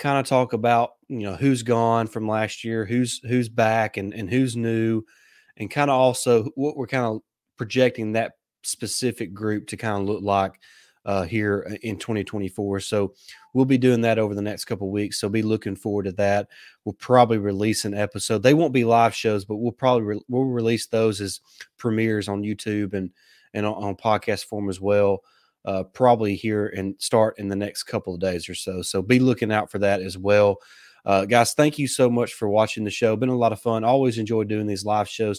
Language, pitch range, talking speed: English, 105-120 Hz, 210 wpm